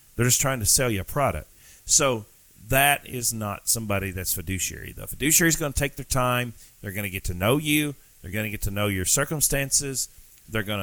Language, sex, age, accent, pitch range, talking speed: English, male, 40-59, American, 100-135 Hz, 220 wpm